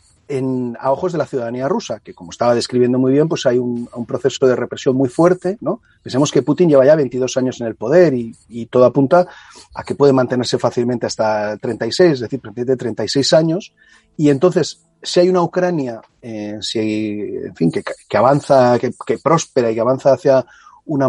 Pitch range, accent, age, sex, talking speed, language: 125-165 Hz, Spanish, 30-49, male, 200 wpm, Spanish